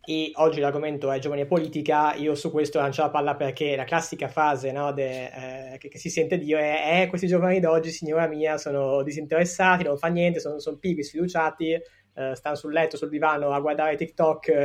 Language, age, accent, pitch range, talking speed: Italian, 20-39, native, 140-165 Hz, 200 wpm